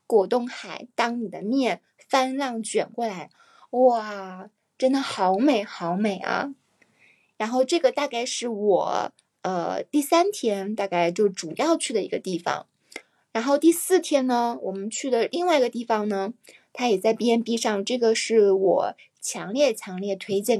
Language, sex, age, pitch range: Chinese, female, 20-39, 210-285 Hz